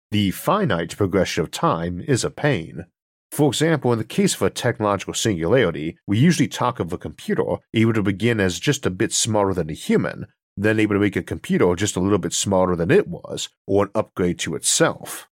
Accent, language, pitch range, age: American, English, 90-120 Hz, 40-59